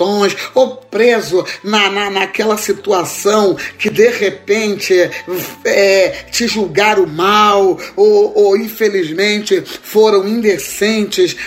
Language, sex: Portuguese, male